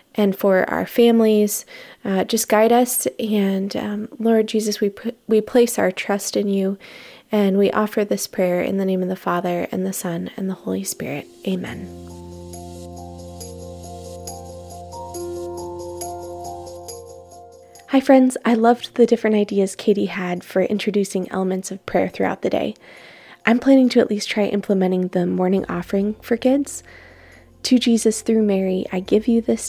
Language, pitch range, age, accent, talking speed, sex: English, 175-225 Hz, 20-39, American, 155 wpm, female